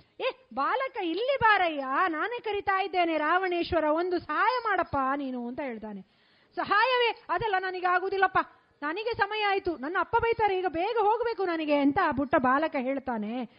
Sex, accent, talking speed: female, native, 140 wpm